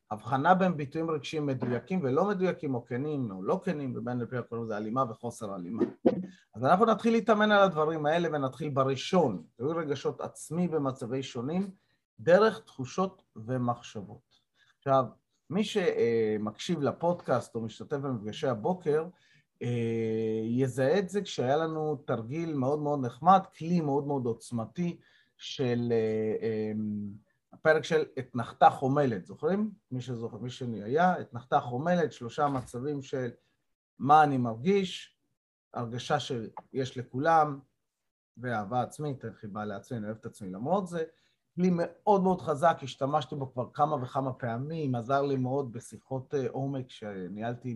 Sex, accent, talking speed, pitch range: male, native, 130 wpm, 120-160 Hz